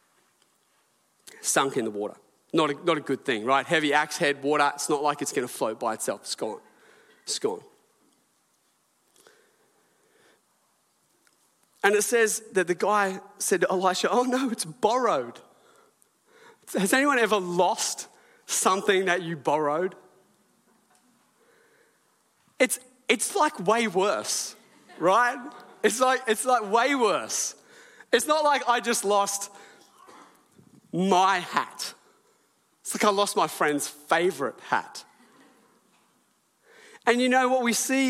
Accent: Australian